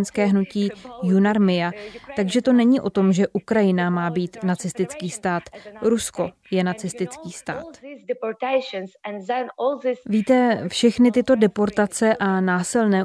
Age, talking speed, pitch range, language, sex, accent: 20-39, 105 wpm, 195-220 Hz, Czech, female, native